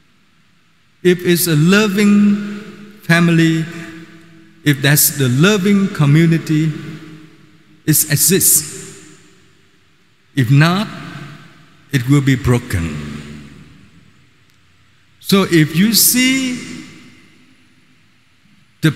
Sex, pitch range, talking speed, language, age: male, 140-180 Hz, 75 wpm, Vietnamese, 50-69